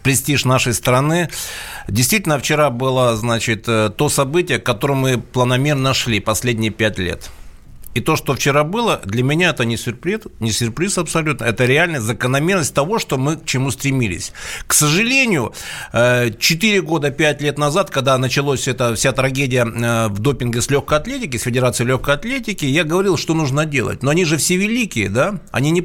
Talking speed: 165 wpm